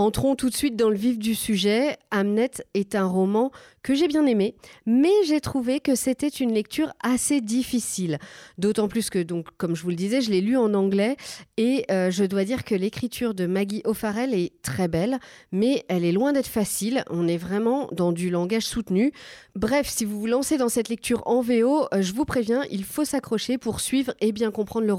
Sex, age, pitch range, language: female, 40-59, 190-255 Hz, French